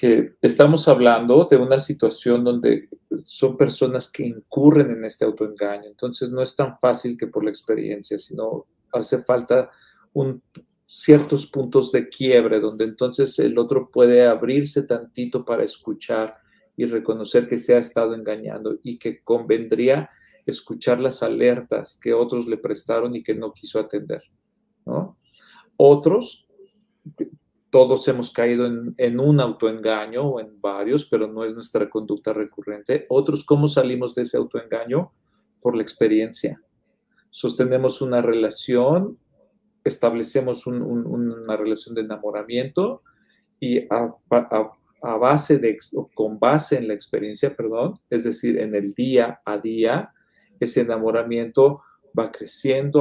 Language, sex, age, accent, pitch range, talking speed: Spanish, male, 40-59, Mexican, 110-135 Hz, 130 wpm